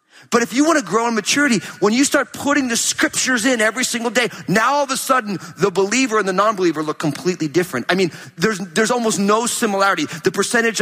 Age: 40-59